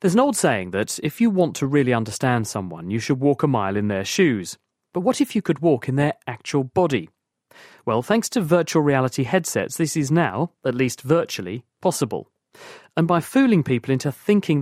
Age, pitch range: 40-59, 100-160 Hz